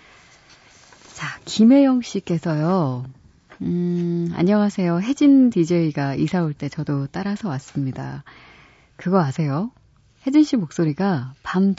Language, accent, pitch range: Korean, native, 140-195 Hz